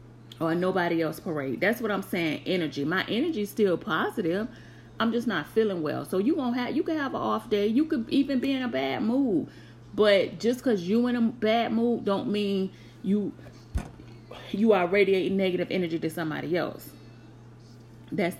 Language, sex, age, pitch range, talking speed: English, female, 30-49, 120-190 Hz, 185 wpm